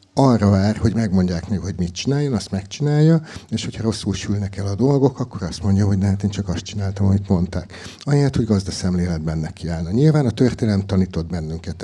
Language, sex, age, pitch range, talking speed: Hungarian, male, 60-79, 90-115 Hz, 205 wpm